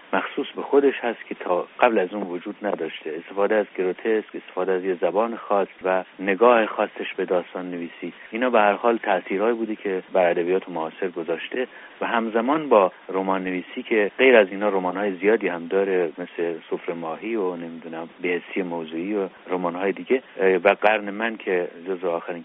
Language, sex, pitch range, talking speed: Persian, male, 90-115 Hz, 175 wpm